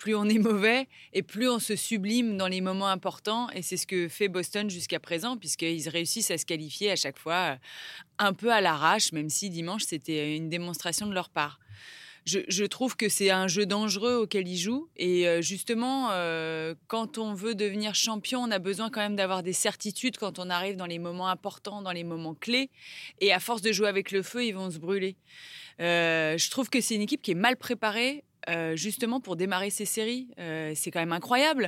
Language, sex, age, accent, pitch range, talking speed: French, female, 20-39, French, 180-235 Hz, 215 wpm